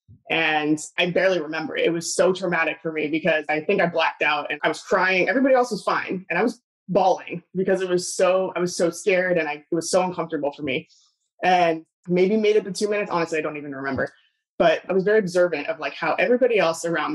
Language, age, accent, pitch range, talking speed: English, 20-39, American, 155-185 Hz, 230 wpm